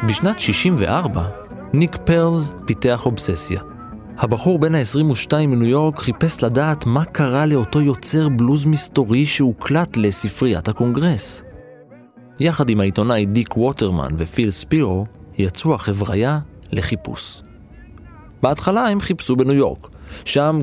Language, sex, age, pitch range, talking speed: Hebrew, male, 20-39, 100-140 Hz, 110 wpm